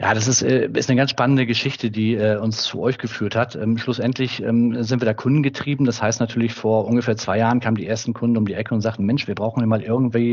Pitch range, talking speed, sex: 110-125 Hz, 240 wpm, male